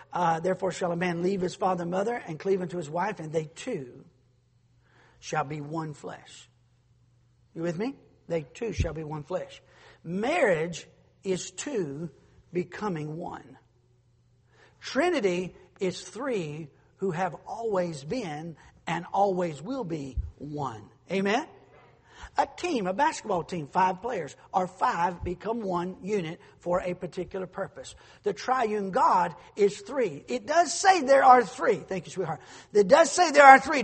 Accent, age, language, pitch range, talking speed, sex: American, 50-69, English, 165-255 Hz, 150 wpm, male